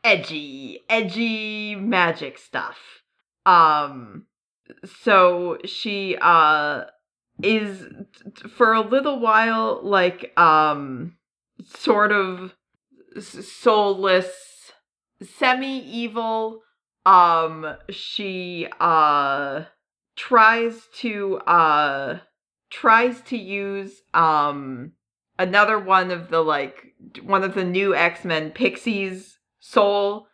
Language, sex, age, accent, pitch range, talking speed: English, female, 30-49, American, 170-220 Hz, 80 wpm